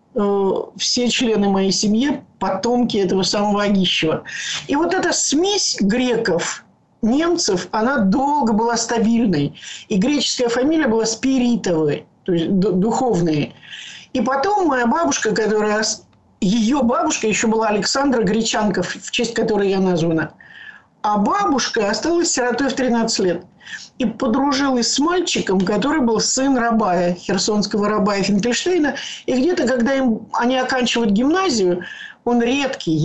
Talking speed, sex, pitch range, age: 125 wpm, male, 205-265 Hz, 50-69